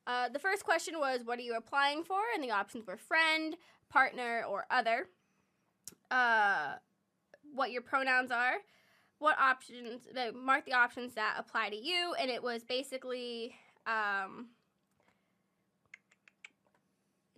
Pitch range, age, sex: 225-265 Hz, 10-29, female